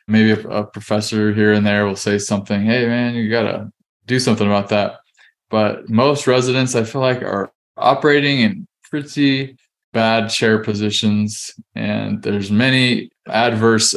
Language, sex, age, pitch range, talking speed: English, male, 20-39, 105-115 Hz, 145 wpm